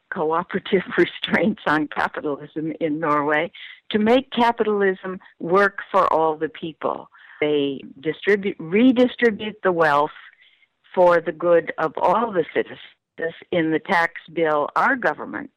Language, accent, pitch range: English, American, 160-210 Hz